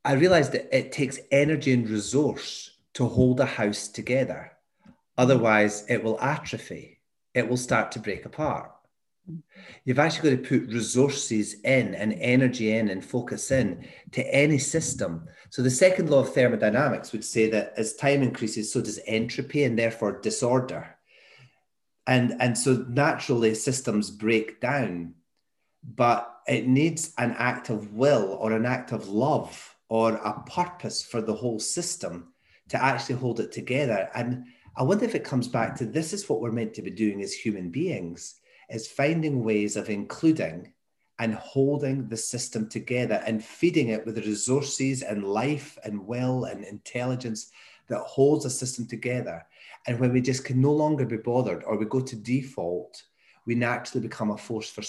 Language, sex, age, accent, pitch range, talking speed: English, male, 30-49, British, 110-135 Hz, 170 wpm